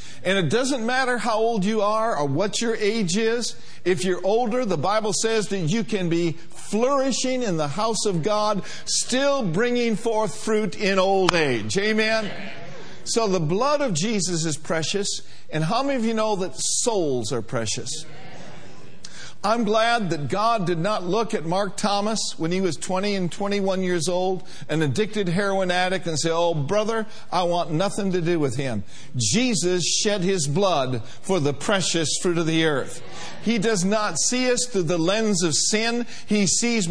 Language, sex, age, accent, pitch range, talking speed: English, male, 50-69, American, 170-220 Hz, 180 wpm